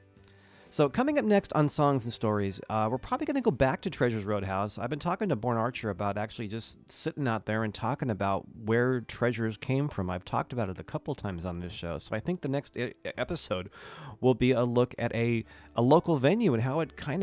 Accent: American